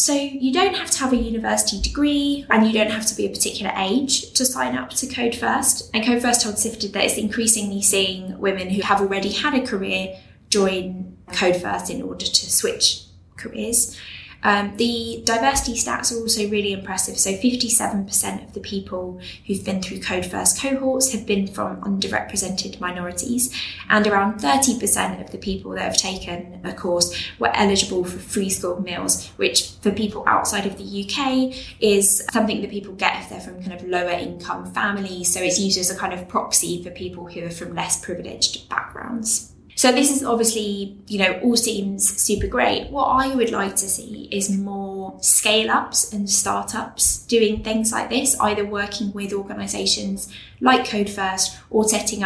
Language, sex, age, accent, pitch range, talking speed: English, female, 10-29, British, 185-230 Hz, 185 wpm